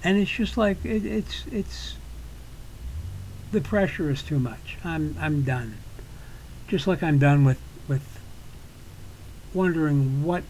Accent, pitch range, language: American, 130-175 Hz, English